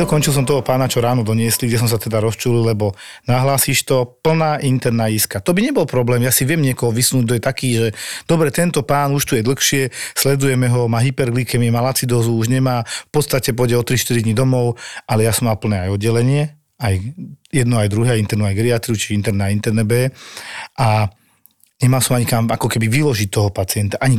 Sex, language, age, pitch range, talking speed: male, Slovak, 40-59, 110-135 Hz, 205 wpm